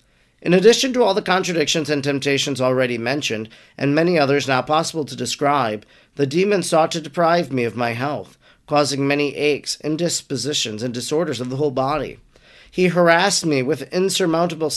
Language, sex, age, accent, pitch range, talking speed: English, male, 40-59, American, 135-180 Hz, 165 wpm